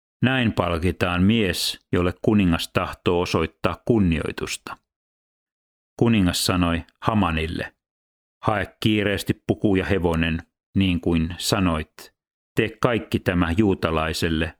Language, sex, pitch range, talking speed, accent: Finnish, male, 85-105 Hz, 95 wpm, native